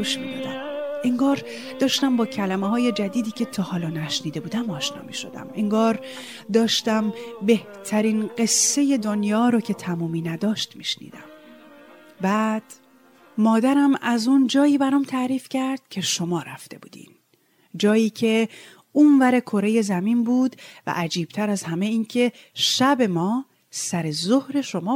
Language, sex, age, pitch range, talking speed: Persian, female, 30-49, 195-265 Hz, 125 wpm